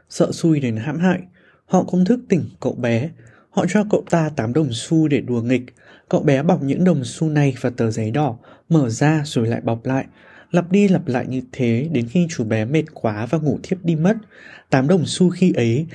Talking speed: 225 wpm